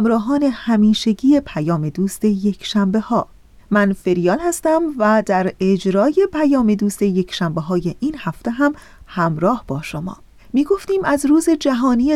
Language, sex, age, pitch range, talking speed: Persian, female, 40-59, 185-245 Hz, 135 wpm